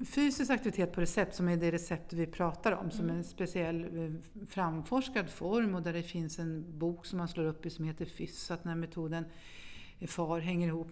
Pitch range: 170-205 Hz